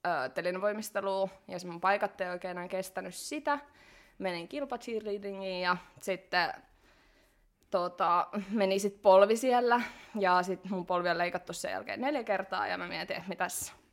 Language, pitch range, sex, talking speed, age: Finnish, 180-210 Hz, female, 135 wpm, 20-39